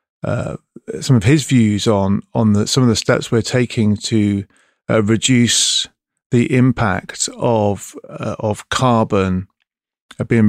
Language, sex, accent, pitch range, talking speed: English, male, British, 105-130 Hz, 135 wpm